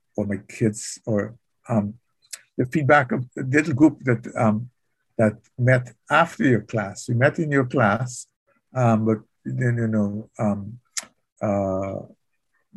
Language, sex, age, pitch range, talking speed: English, male, 60-79, 110-130 Hz, 140 wpm